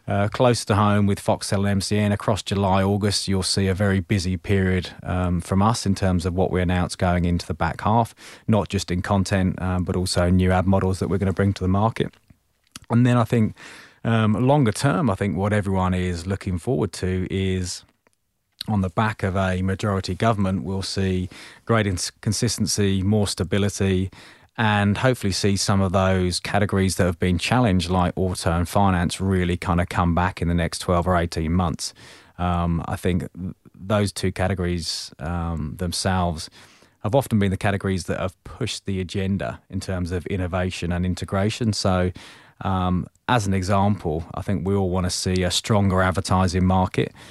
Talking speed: 185 wpm